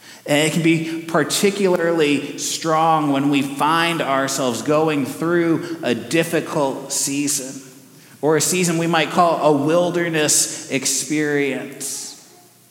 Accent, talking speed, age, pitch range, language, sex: American, 115 wpm, 30-49, 130-165 Hz, English, male